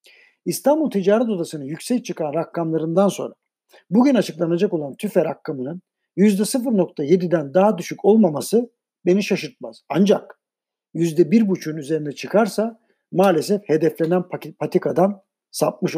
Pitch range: 160-210 Hz